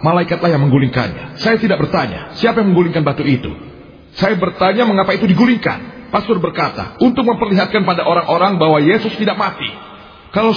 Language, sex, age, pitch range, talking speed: Indonesian, male, 40-59, 140-195 Hz, 155 wpm